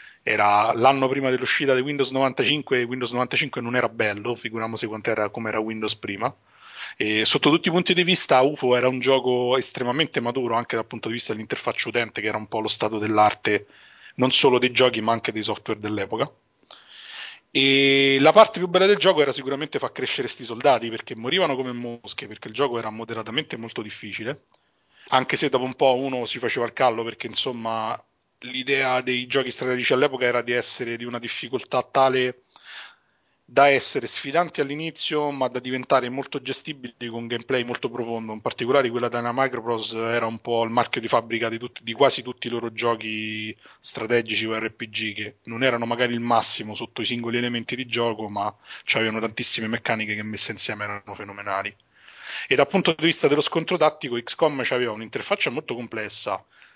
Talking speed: 180 wpm